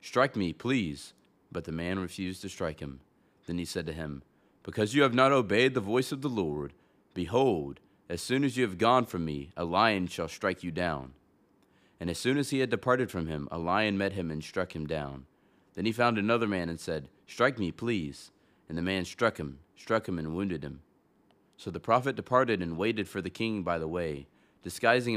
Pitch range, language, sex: 85-115 Hz, English, male